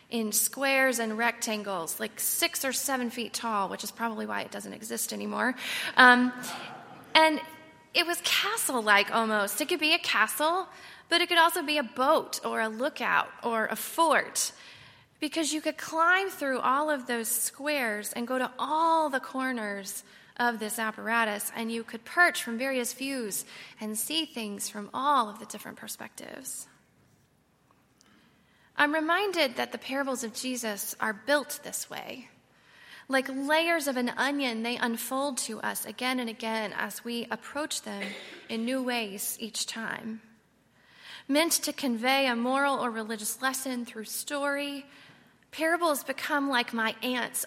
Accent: American